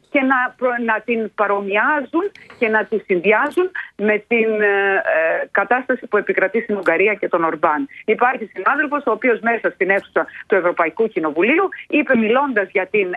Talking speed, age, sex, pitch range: 165 wpm, 40-59, female, 195-270 Hz